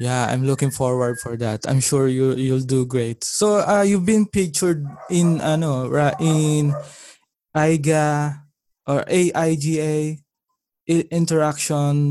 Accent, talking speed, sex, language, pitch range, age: Filipino, 130 wpm, male, English, 130-155 Hz, 20-39